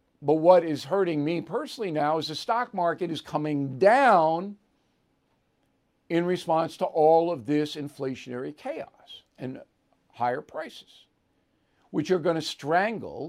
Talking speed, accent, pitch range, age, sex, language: 135 wpm, American, 150-190 Hz, 60-79, male, English